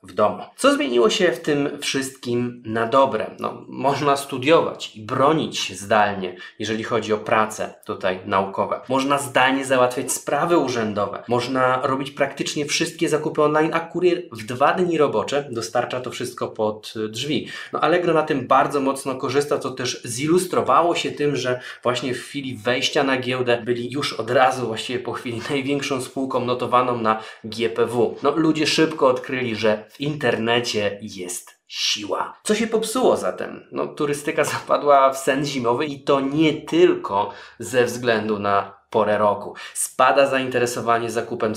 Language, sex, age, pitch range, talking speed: Polish, male, 20-39, 120-145 Hz, 155 wpm